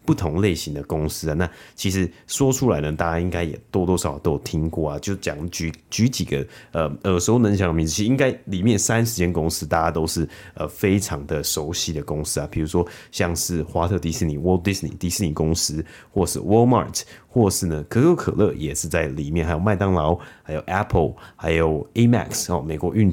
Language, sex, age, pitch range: Chinese, male, 30-49, 80-95 Hz